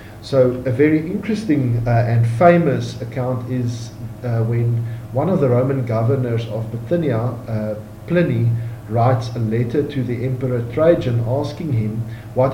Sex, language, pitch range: male, English, 110-140 Hz